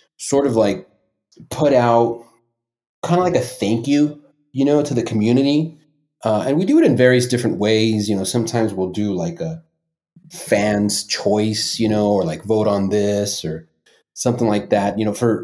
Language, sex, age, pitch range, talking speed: English, male, 30-49, 100-145 Hz, 185 wpm